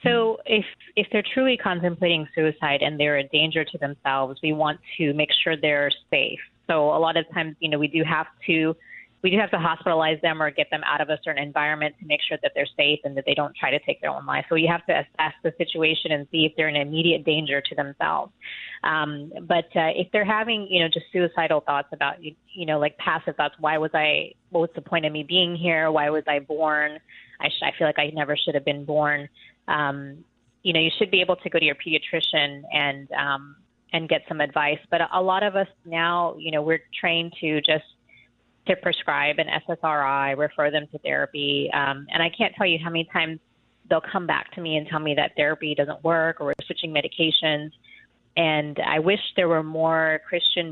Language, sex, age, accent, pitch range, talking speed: English, female, 20-39, American, 150-170 Hz, 230 wpm